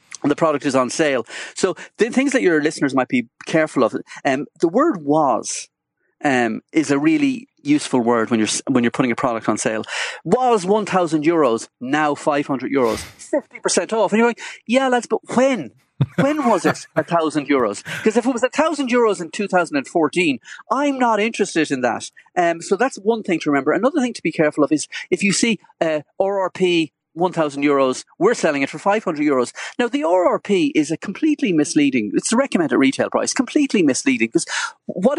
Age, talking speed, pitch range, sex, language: 30-49, 185 wpm, 150-250 Hz, male, English